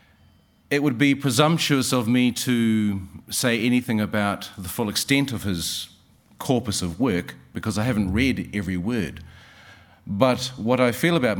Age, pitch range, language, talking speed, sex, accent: 40-59, 95-125 Hz, English, 155 wpm, male, Australian